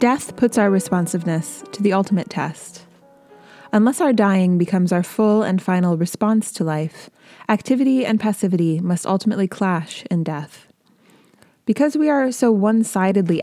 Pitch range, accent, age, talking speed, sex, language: 170-220 Hz, American, 20-39, 145 wpm, female, English